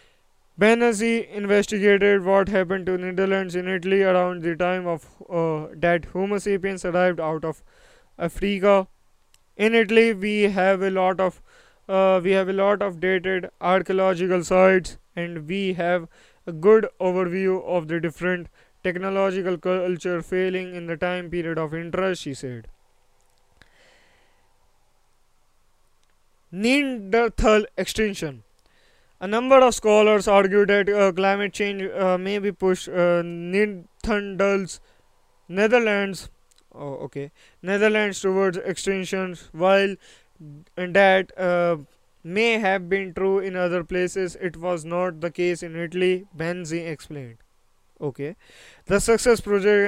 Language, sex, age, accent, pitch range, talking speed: English, male, 20-39, Indian, 175-200 Hz, 125 wpm